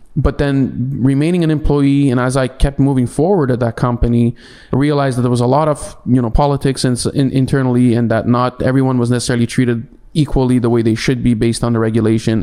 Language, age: English, 20-39